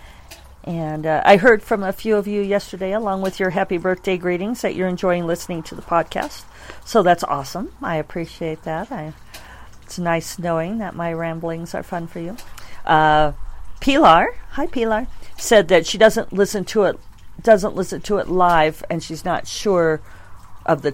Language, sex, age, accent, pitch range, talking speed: English, female, 50-69, American, 155-205 Hz, 180 wpm